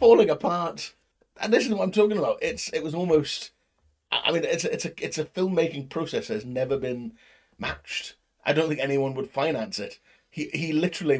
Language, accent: English, British